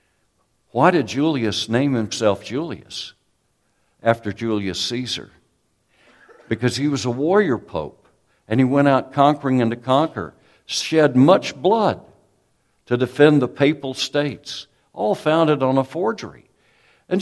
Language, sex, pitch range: English, male, 120-170 Hz